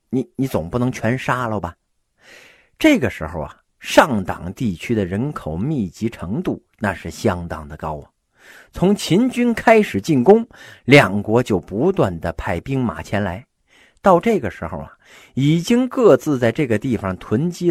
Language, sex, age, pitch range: Chinese, male, 50-69, 95-145 Hz